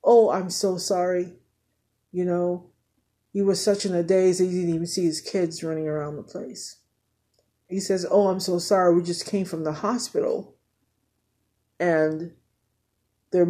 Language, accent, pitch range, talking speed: English, American, 150-180 Hz, 165 wpm